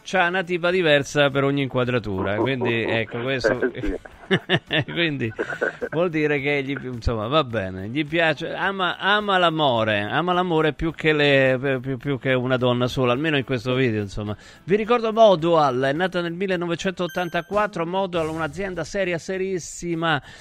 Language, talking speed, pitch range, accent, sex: Italian, 145 wpm, 115-165 Hz, native, male